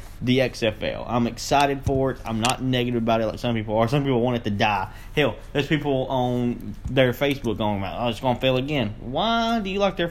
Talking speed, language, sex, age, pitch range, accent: 230 wpm, English, male, 20-39, 95-135 Hz, American